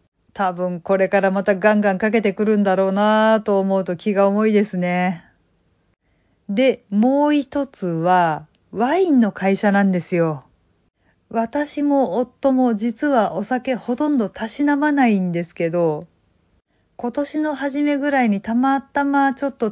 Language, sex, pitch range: Japanese, female, 185-255 Hz